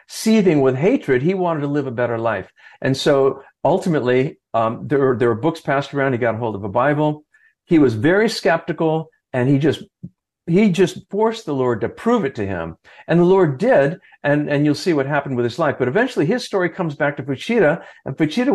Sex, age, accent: male, 50-69, American